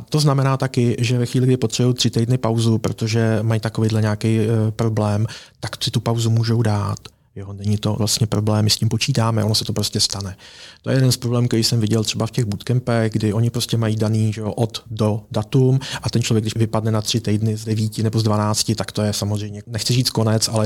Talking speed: 225 wpm